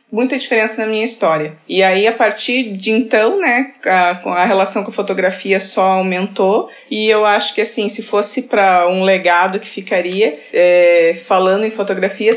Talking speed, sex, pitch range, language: 175 wpm, female, 185-225 Hz, Portuguese